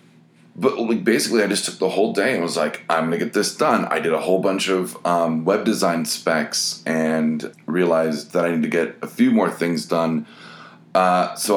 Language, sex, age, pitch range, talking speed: English, male, 30-49, 80-95 Hz, 215 wpm